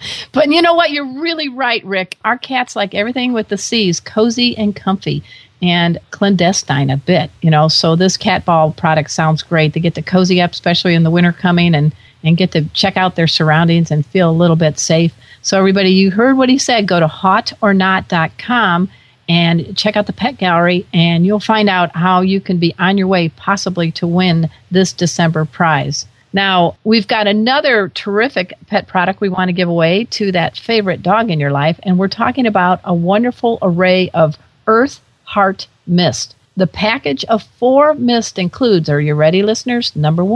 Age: 50-69